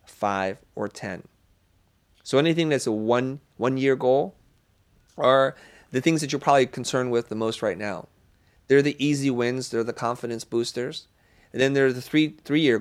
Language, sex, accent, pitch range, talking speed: English, male, American, 105-130 Hz, 190 wpm